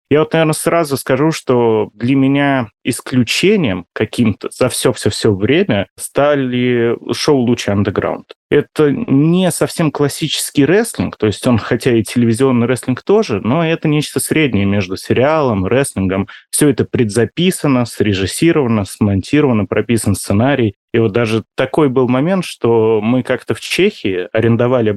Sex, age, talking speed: male, 30-49, 140 wpm